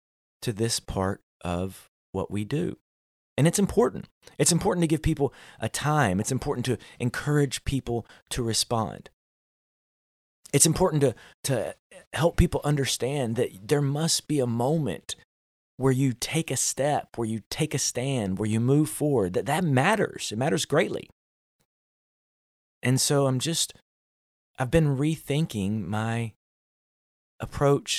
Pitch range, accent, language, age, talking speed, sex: 105-145 Hz, American, English, 30-49, 140 wpm, male